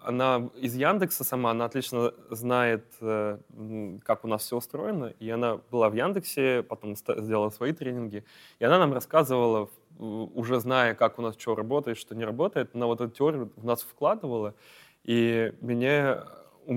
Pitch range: 115-140 Hz